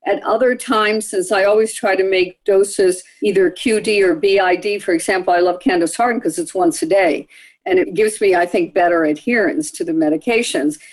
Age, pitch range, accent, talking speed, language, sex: 50-69, 195-320 Hz, American, 200 wpm, English, female